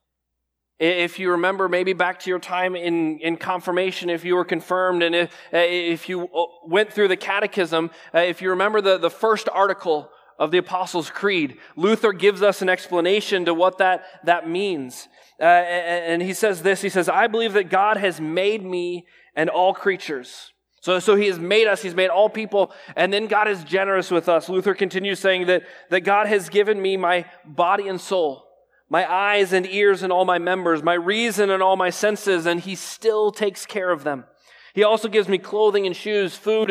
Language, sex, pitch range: English, male, 175-205 Hz